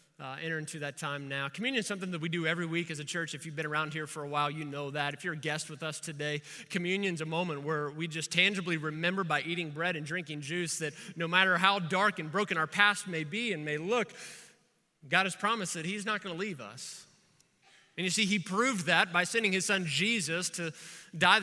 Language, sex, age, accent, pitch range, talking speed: English, male, 20-39, American, 160-190 Hz, 245 wpm